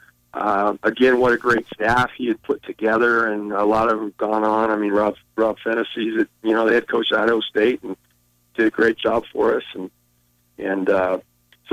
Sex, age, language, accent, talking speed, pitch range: male, 50-69, English, American, 205 wpm, 110-145 Hz